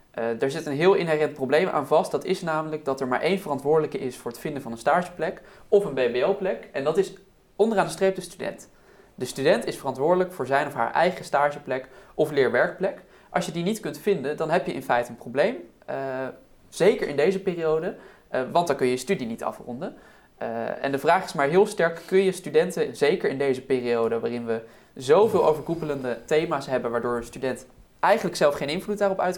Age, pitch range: 20-39, 135-190 Hz